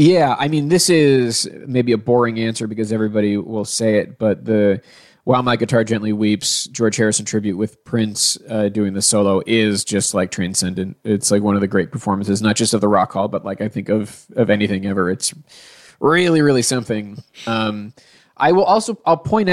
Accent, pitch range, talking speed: American, 105-130 Hz, 200 wpm